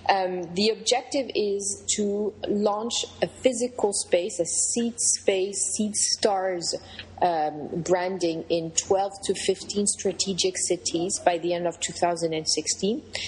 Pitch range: 170-195 Hz